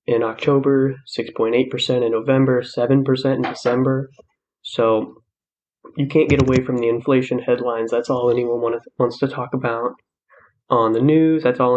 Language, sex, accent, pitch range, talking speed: English, male, American, 120-135 Hz, 160 wpm